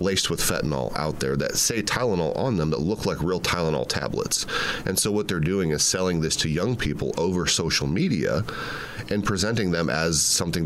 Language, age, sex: English, 30-49, male